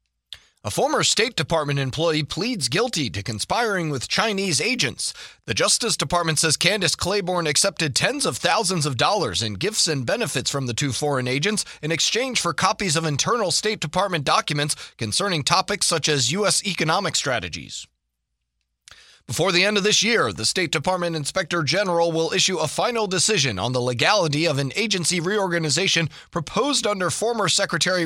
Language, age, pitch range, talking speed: English, 30-49, 140-180 Hz, 165 wpm